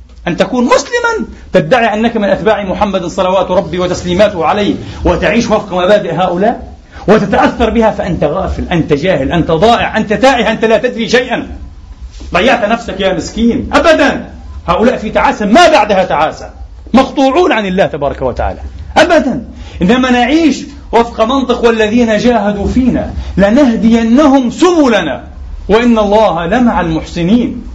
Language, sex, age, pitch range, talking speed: Arabic, male, 40-59, 185-245 Hz, 130 wpm